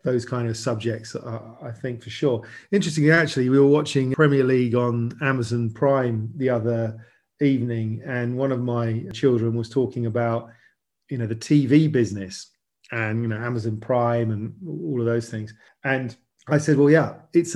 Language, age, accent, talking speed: English, 40-59, British, 175 wpm